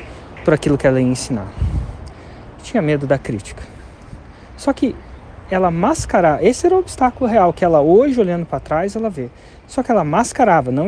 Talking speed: 175 wpm